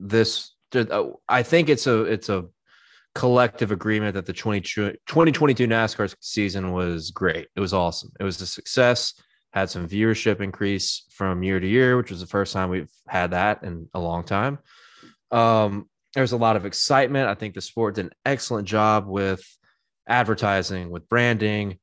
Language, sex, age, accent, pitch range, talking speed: English, male, 20-39, American, 95-125 Hz, 170 wpm